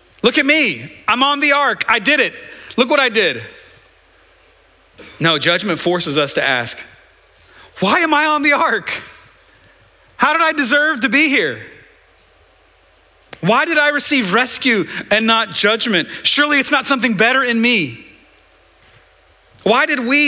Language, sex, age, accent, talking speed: English, male, 40-59, American, 150 wpm